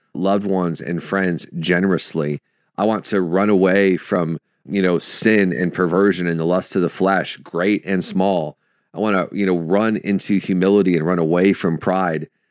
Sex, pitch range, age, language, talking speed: male, 85-100 Hz, 40-59, English, 180 wpm